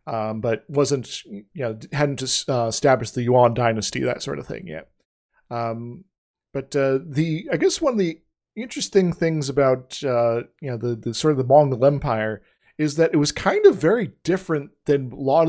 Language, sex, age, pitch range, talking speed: English, male, 40-59, 125-155 Hz, 185 wpm